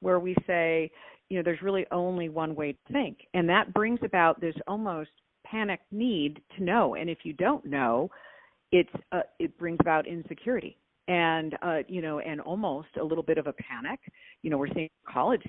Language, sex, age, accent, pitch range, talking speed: English, female, 50-69, American, 155-190 Hz, 195 wpm